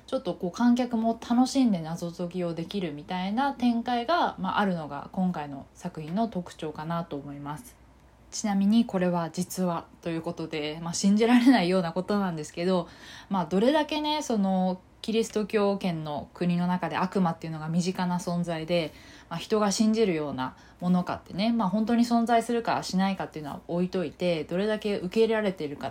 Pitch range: 165-235 Hz